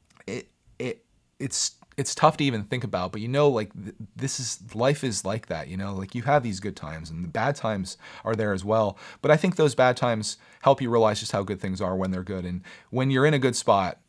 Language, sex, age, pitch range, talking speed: English, male, 30-49, 100-130 Hz, 250 wpm